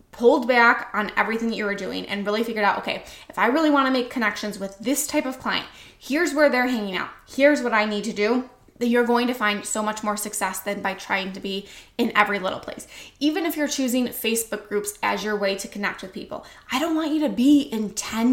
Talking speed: 240 wpm